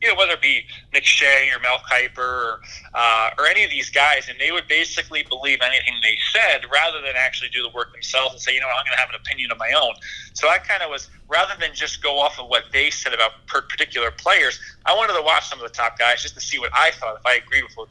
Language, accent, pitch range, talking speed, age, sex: English, American, 120-145 Hz, 280 wpm, 30-49, male